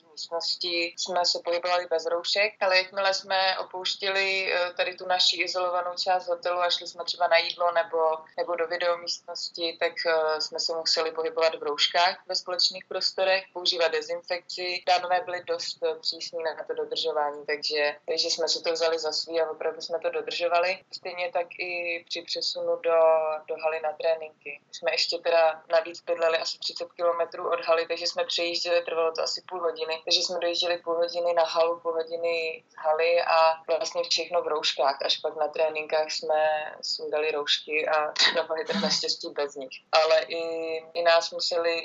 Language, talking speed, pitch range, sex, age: Slovak, 175 wpm, 160-175 Hz, female, 20-39